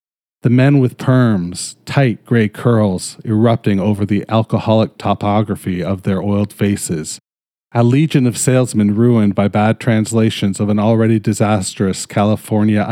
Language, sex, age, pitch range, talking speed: English, male, 40-59, 100-115 Hz, 135 wpm